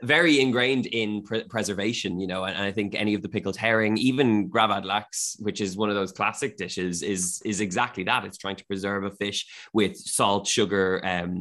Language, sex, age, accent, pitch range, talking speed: English, male, 20-39, Irish, 95-110 Hz, 200 wpm